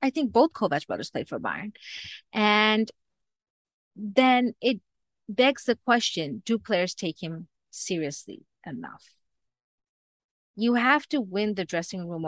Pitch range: 170-225 Hz